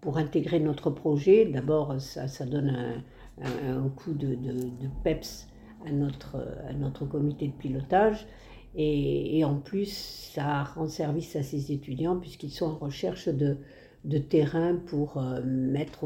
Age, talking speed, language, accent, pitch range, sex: 60-79, 155 wpm, French, French, 135-165 Hz, female